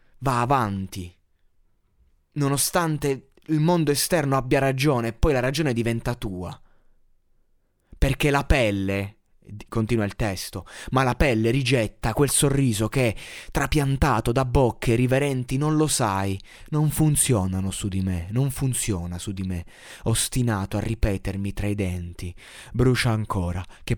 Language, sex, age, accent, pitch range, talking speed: Italian, male, 20-39, native, 100-135 Hz, 135 wpm